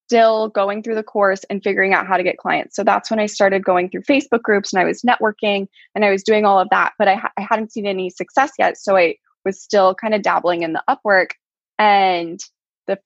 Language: English